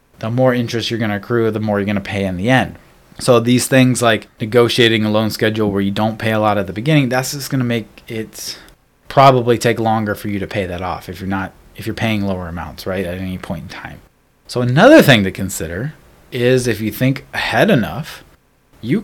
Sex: male